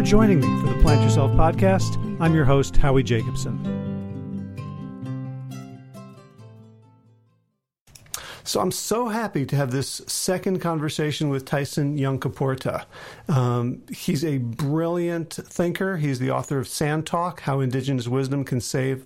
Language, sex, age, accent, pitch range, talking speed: English, male, 40-59, American, 130-170 Hz, 130 wpm